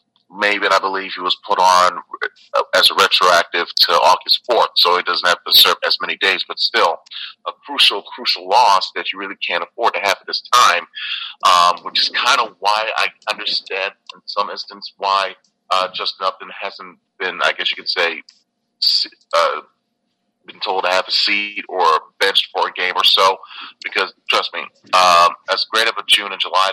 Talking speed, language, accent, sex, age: 195 wpm, English, American, male, 40-59